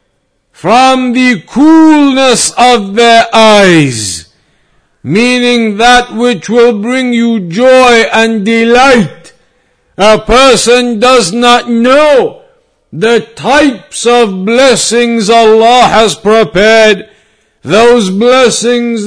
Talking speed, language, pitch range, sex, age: 90 wpm, English, 220-250 Hz, male, 50-69